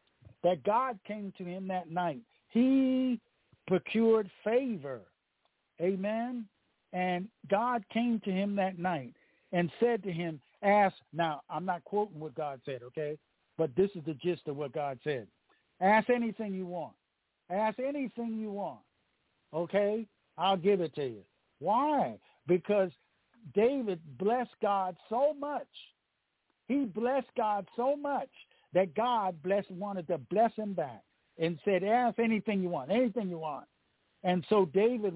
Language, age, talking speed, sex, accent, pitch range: English, 60-79, 145 wpm, male, American, 170-220 Hz